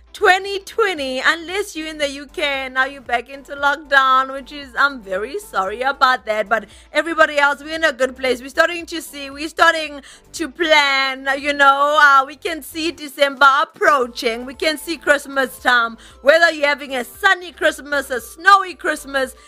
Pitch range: 255-330 Hz